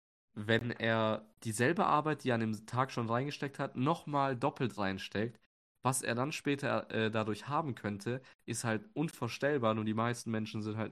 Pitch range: 100-120 Hz